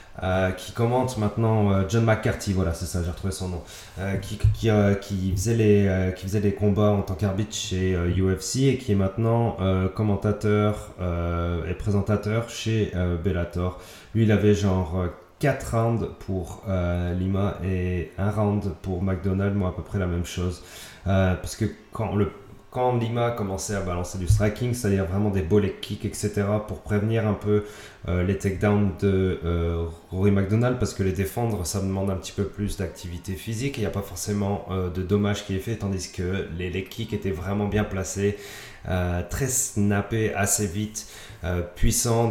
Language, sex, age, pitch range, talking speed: French, male, 30-49, 95-105 Hz, 190 wpm